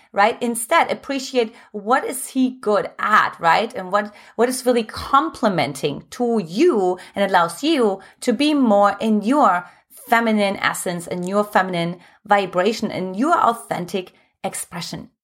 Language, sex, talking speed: English, female, 140 wpm